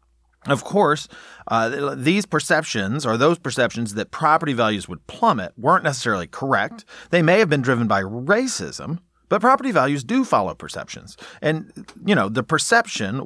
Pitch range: 115-175 Hz